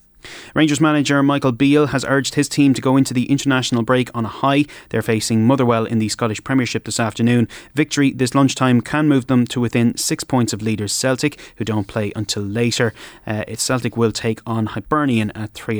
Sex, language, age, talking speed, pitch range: male, English, 30-49, 200 wpm, 110-135 Hz